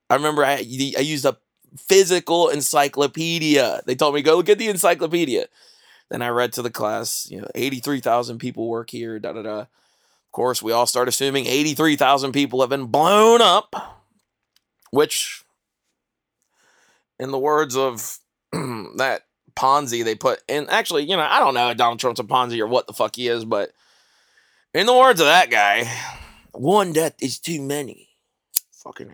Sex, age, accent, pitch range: male, 30-49, American, 120-165 Hz